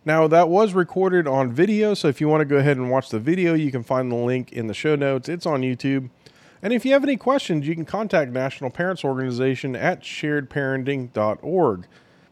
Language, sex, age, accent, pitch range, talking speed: English, male, 40-59, American, 130-175 Hz, 210 wpm